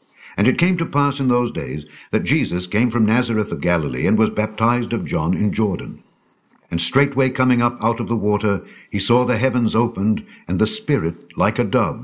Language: English